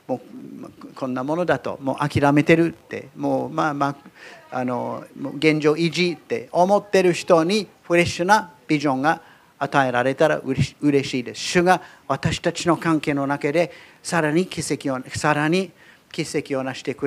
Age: 50-69